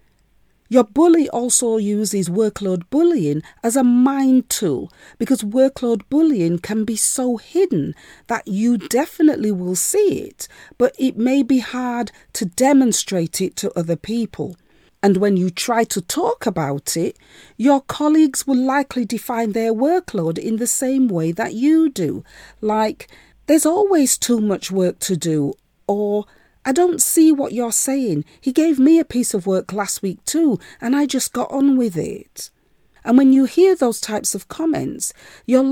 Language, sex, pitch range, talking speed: English, female, 190-270 Hz, 165 wpm